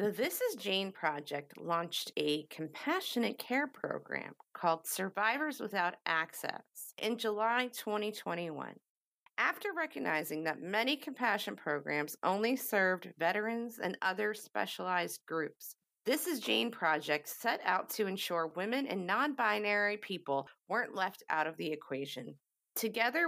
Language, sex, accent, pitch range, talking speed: English, female, American, 165-230 Hz, 125 wpm